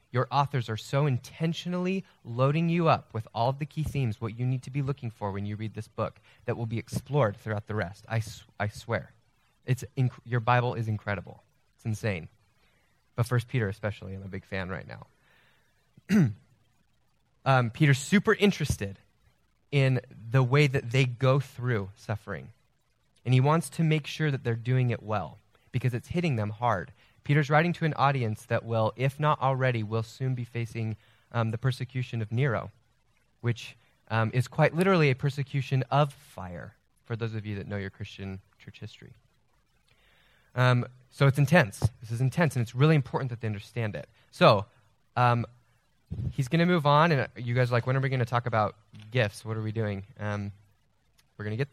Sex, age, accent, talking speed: male, 20-39, American, 190 wpm